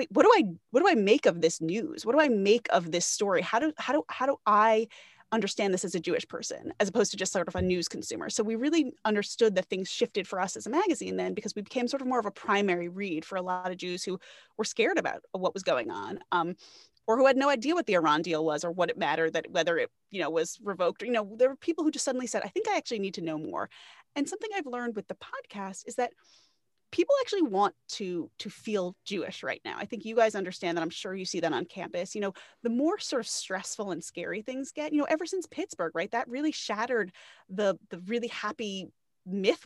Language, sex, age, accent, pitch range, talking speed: English, female, 30-49, American, 190-260 Hz, 260 wpm